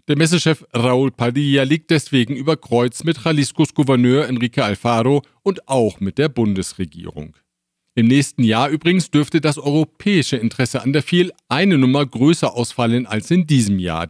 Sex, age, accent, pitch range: male, 50-69, German, 115-155 Hz